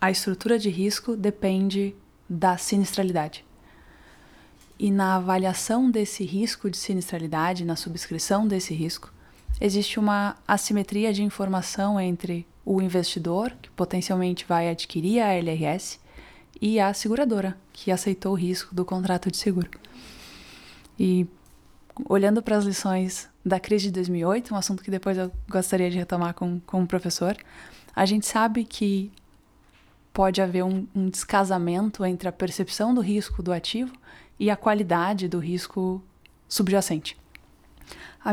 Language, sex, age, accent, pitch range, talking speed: Portuguese, female, 20-39, Brazilian, 180-205 Hz, 135 wpm